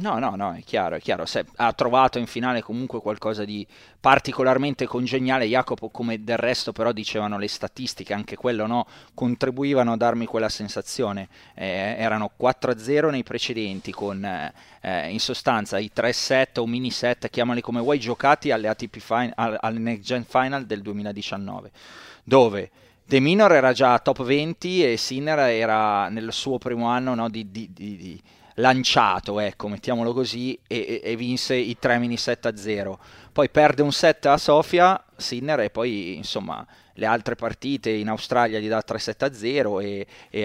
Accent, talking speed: native, 175 wpm